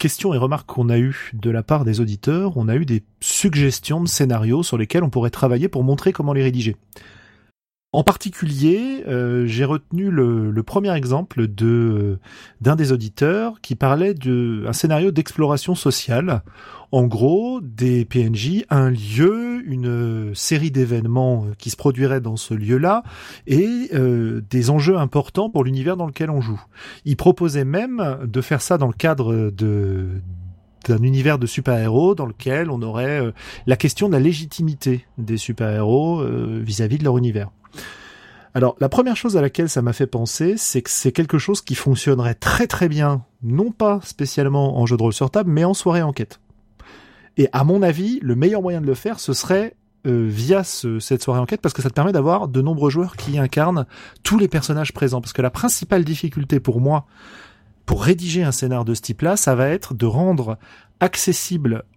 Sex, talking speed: male, 185 wpm